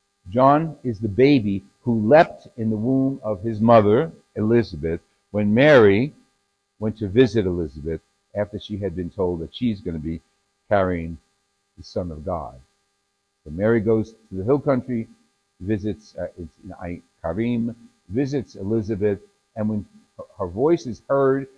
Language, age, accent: English, 60-79, American